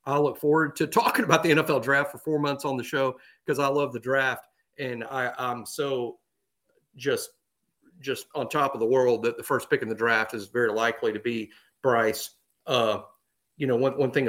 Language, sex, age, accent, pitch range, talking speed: English, male, 40-59, American, 125-165 Hz, 210 wpm